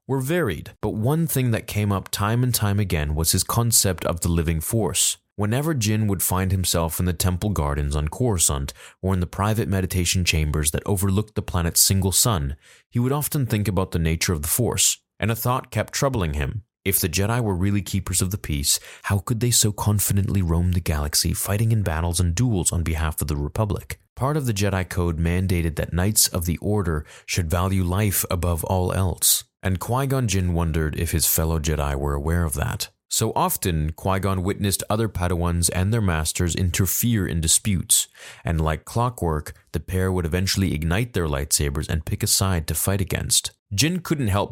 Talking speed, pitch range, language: 195 wpm, 85-105 Hz, English